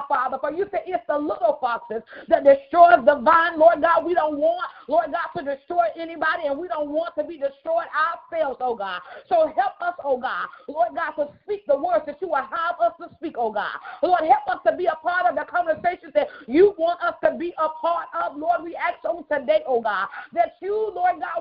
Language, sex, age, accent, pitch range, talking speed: English, female, 40-59, American, 290-345 Hz, 230 wpm